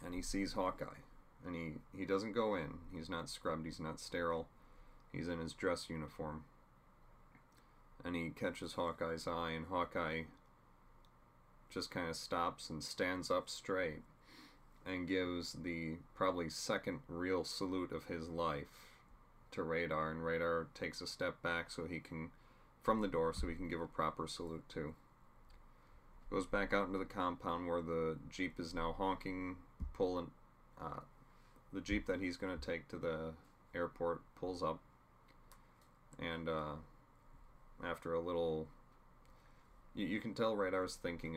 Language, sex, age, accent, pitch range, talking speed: English, male, 30-49, American, 80-90 Hz, 150 wpm